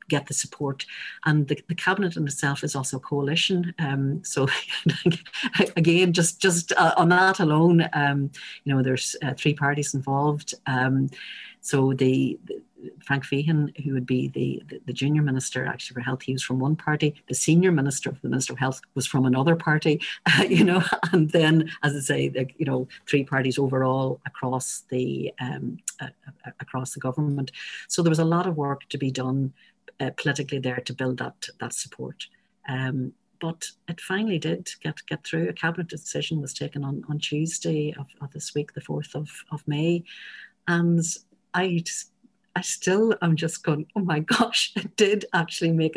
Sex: female